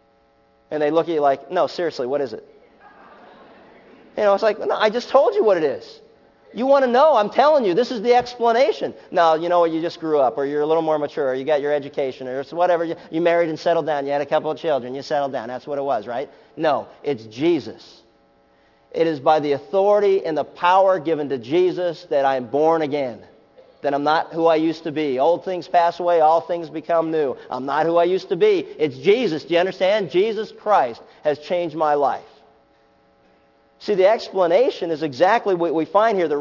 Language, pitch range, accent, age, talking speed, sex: English, 155-240 Hz, American, 40-59, 225 wpm, male